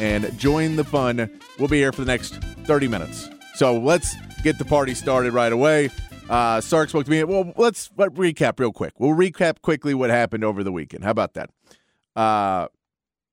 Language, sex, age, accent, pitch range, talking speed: English, male, 30-49, American, 130-170 Hz, 195 wpm